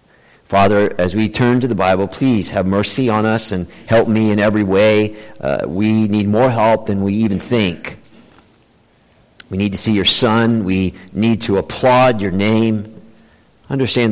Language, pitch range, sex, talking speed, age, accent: English, 100-120 Hz, male, 170 wpm, 50-69, American